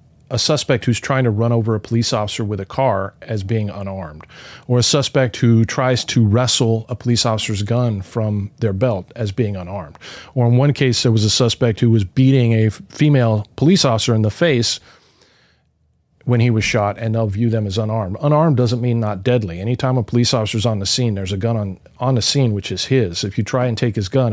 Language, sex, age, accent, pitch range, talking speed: English, male, 40-59, American, 110-135 Hz, 220 wpm